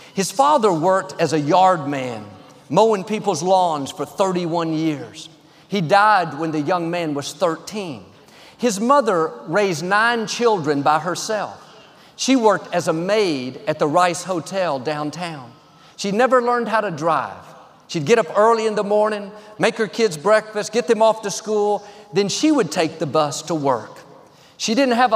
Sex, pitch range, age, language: male, 165-230 Hz, 50-69, English